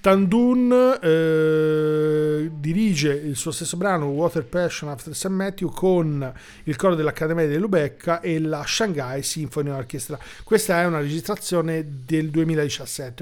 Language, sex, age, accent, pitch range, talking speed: Italian, male, 50-69, native, 145-175 Hz, 130 wpm